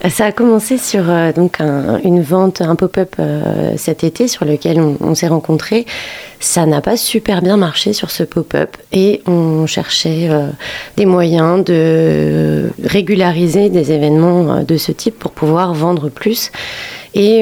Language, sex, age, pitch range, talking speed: French, female, 30-49, 155-185 Hz, 165 wpm